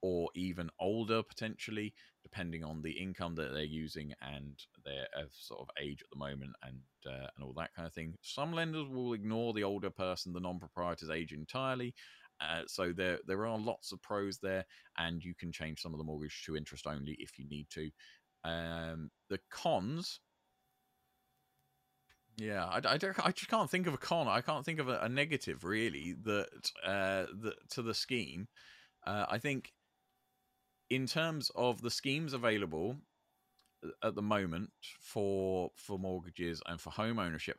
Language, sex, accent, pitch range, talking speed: English, male, British, 80-120 Hz, 175 wpm